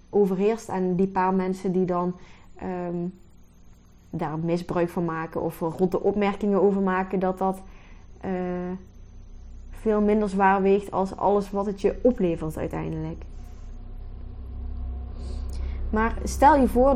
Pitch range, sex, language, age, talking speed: 165-200 Hz, female, Dutch, 20-39, 125 wpm